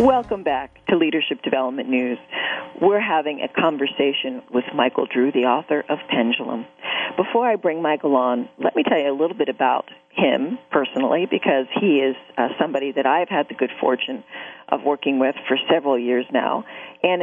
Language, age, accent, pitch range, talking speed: English, 40-59, American, 130-160 Hz, 180 wpm